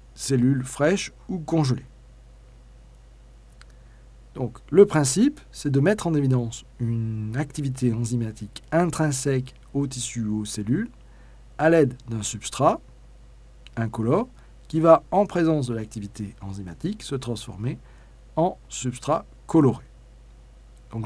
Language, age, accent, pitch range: French, 40-59, French, 115-145 Hz